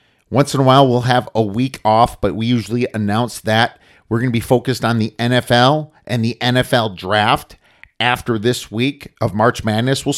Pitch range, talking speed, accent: 105-125 Hz, 190 wpm, American